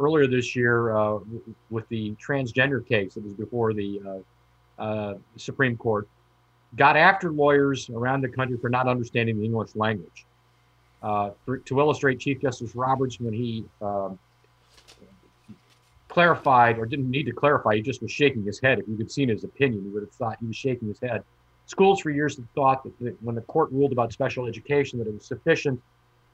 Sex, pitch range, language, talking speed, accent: male, 110-145 Hz, English, 185 wpm, American